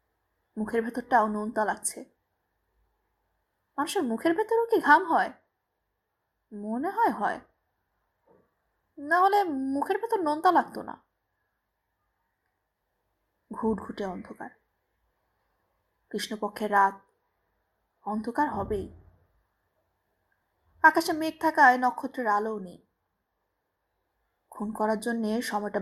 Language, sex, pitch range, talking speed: Hindi, female, 205-290 Hz, 80 wpm